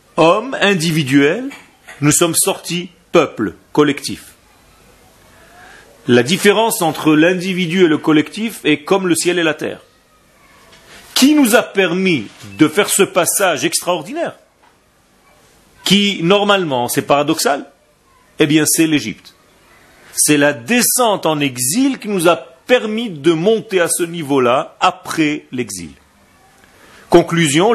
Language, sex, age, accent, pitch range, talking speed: French, male, 40-59, French, 150-215 Hz, 120 wpm